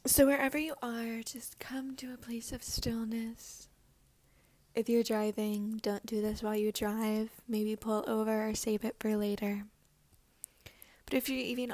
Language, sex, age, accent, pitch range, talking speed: English, female, 10-29, American, 215-250 Hz, 165 wpm